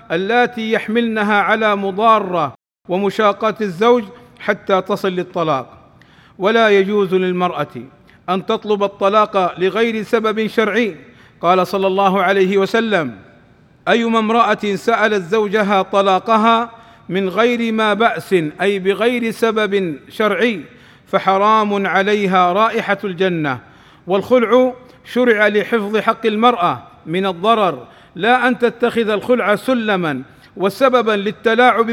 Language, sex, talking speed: Arabic, male, 100 wpm